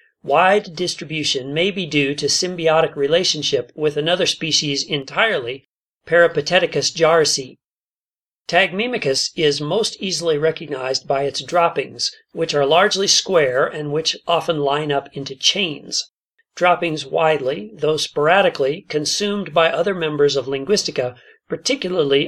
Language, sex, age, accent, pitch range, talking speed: English, male, 40-59, American, 145-180 Hz, 120 wpm